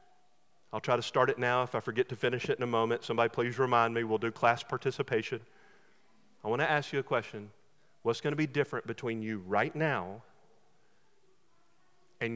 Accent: American